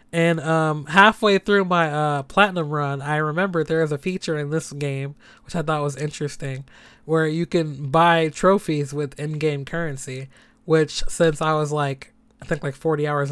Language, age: English, 20-39